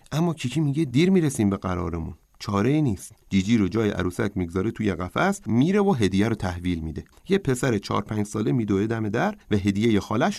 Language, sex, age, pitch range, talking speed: Persian, male, 30-49, 95-140 Hz, 190 wpm